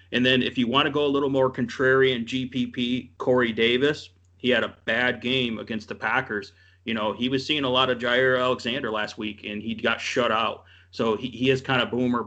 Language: English